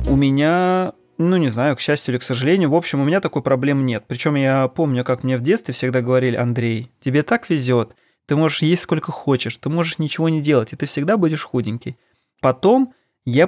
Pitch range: 125-155 Hz